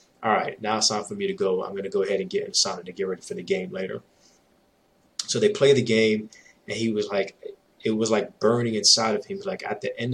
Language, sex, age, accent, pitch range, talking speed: English, male, 20-39, American, 110-140 Hz, 265 wpm